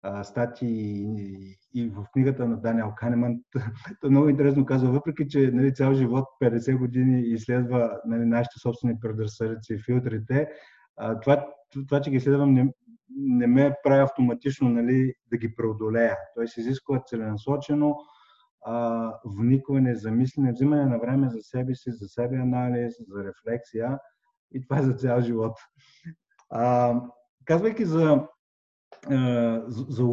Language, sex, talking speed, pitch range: Bulgarian, male, 135 wpm, 115-140 Hz